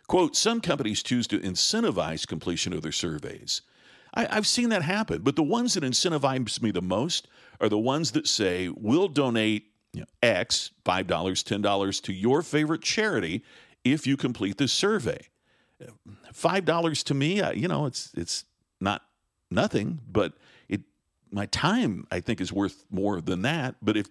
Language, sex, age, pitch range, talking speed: English, male, 50-69, 105-155 Hz, 165 wpm